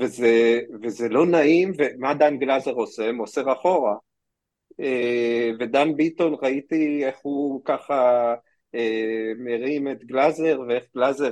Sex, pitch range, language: male, 125-175 Hz, Hebrew